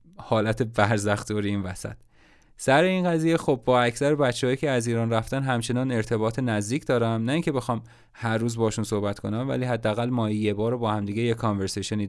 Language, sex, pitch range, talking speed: Persian, male, 105-125 Hz, 185 wpm